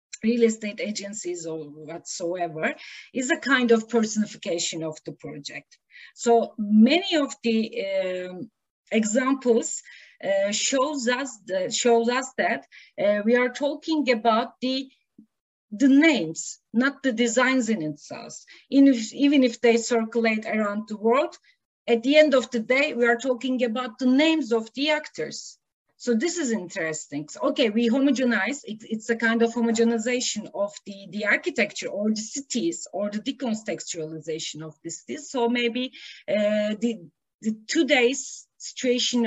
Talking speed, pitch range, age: 145 wpm, 205-260 Hz, 40-59